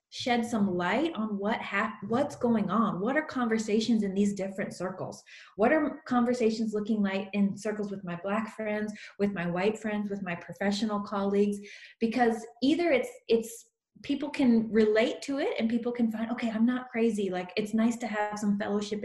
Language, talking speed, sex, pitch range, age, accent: English, 185 wpm, female, 195-240 Hz, 20-39, American